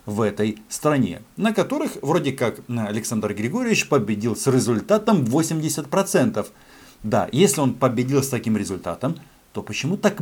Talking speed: 135 wpm